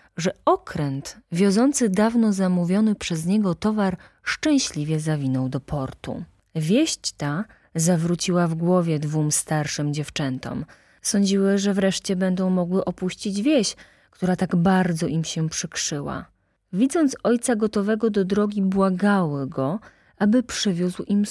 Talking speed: 120 wpm